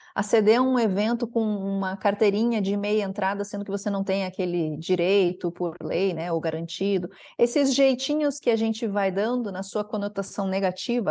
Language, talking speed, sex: Portuguese, 185 wpm, female